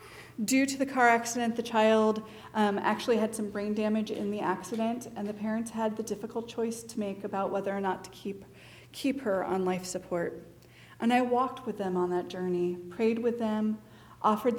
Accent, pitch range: American, 190-230 Hz